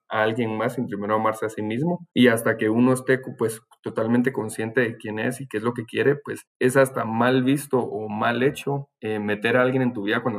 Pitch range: 105-130 Hz